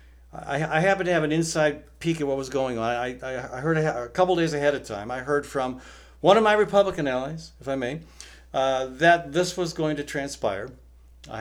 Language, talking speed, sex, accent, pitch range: English, 225 wpm, male, American, 120-170 Hz